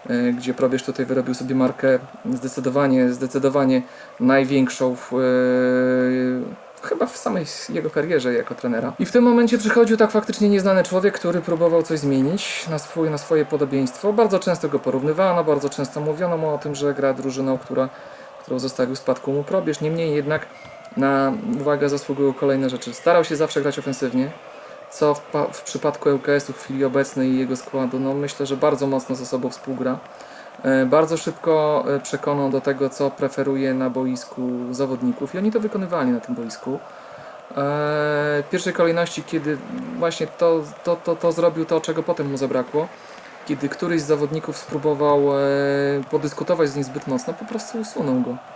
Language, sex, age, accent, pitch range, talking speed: Polish, male, 40-59, native, 135-165 Hz, 160 wpm